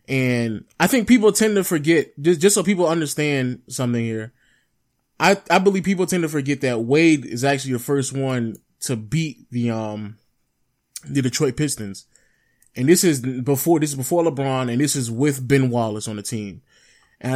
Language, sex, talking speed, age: English, male, 185 wpm, 20-39